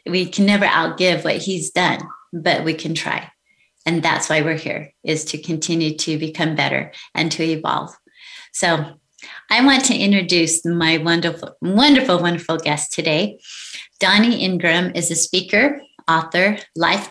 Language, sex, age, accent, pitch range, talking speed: English, female, 30-49, American, 160-205 Hz, 150 wpm